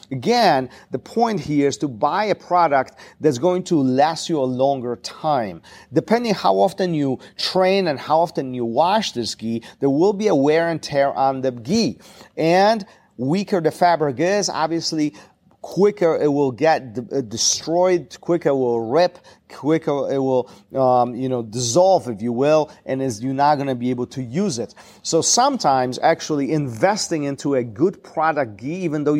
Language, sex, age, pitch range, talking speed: English, male, 40-59, 125-170 Hz, 175 wpm